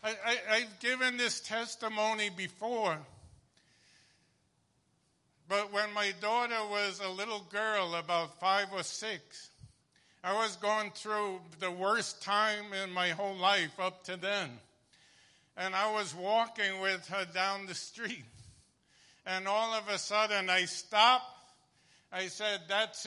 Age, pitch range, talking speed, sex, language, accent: 50-69, 195-235 Hz, 130 wpm, male, English, American